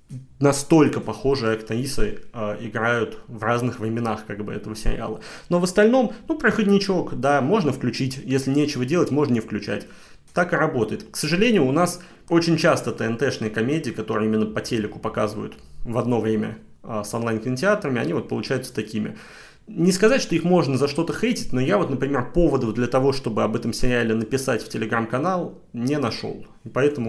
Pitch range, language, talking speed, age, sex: 115-155 Hz, Russian, 175 wpm, 20-39, male